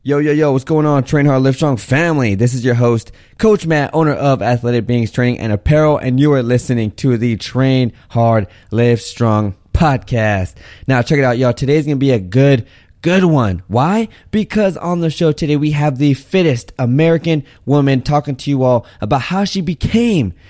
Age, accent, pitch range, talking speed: 20-39, American, 110-145 Hz, 195 wpm